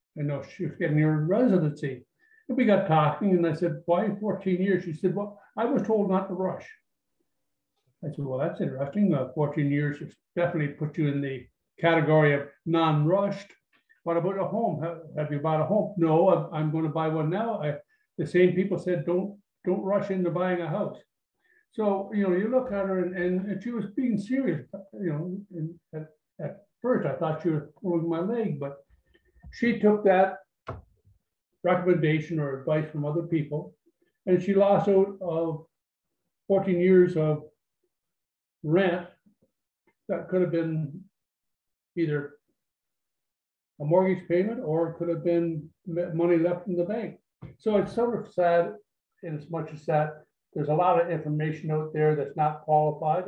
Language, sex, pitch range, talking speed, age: English, male, 150-190 Hz, 175 wpm, 60-79